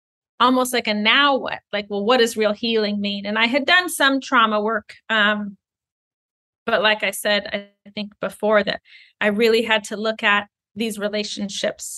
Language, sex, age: English, female, 30-49